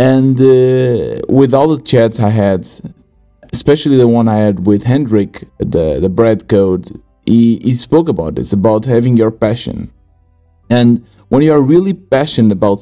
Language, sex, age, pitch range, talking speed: English, male, 30-49, 110-125 Hz, 165 wpm